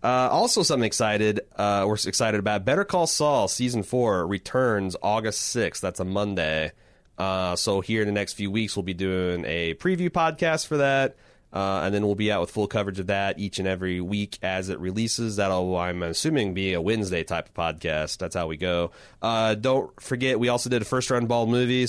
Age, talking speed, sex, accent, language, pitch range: 30-49, 210 wpm, male, American, English, 100-125 Hz